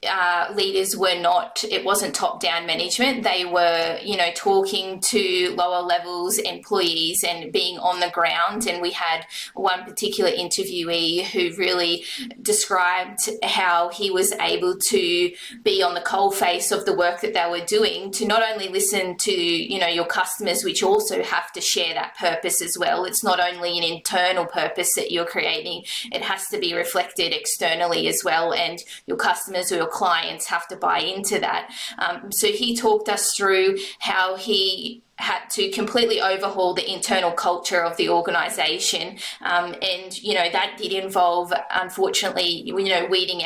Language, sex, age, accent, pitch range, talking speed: English, female, 20-39, Australian, 175-215 Hz, 170 wpm